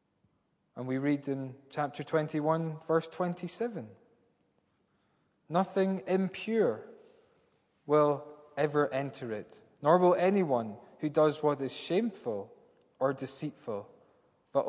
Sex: male